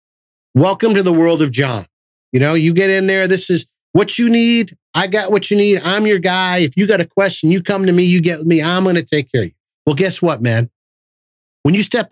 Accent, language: American, English